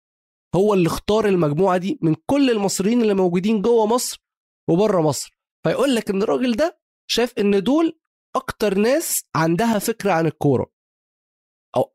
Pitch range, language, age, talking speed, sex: 125-185 Hz, Arabic, 20-39, 145 wpm, male